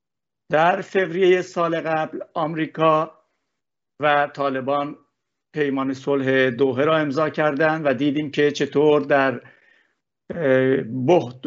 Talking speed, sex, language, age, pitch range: 100 wpm, male, Persian, 60-79, 130-155 Hz